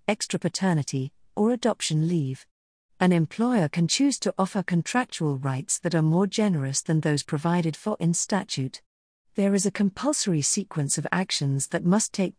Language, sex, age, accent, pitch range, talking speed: English, female, 50-69, British, 155-205 Hz, 160 wpm